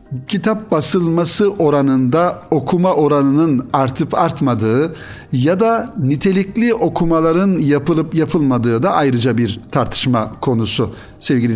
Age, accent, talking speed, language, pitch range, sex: 60-79, native, 100 wpm, Turkish, 125-165 Hz, male